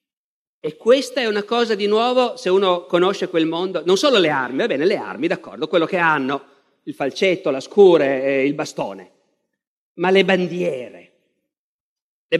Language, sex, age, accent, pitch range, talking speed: Italian, male, 50-69, native, 160-210 Hz, 165 wpm